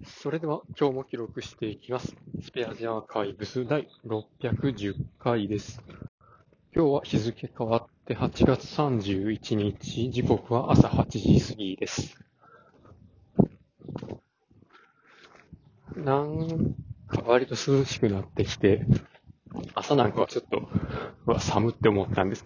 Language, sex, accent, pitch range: Japanese, male, native, 110-145 Hz